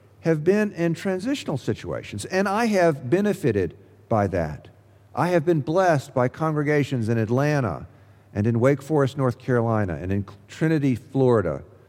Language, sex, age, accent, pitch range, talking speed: English, male, 50-69, American, 105-140 Hz, 145 wpm